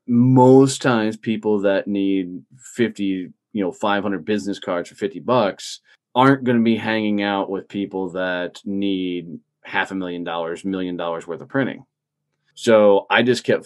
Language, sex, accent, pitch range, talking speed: English, male, American, 90-105 Hz, 165 wpm